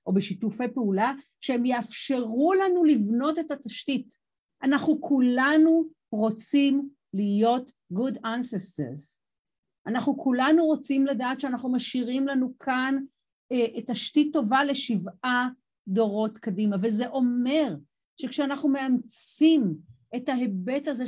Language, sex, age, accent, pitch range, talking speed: Hebrew, female, 50-69, native, 205-275 Hz, 100 wpm